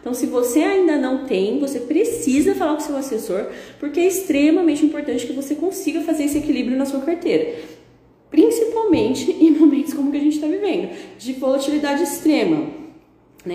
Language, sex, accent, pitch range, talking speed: Portuguese, female, Brazilian, 235-325 Hz, 170 wpm